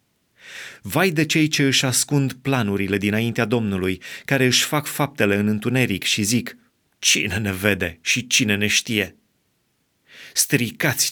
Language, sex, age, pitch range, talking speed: Romanian, male, 30-49, 110-135 Hz, 135 wpm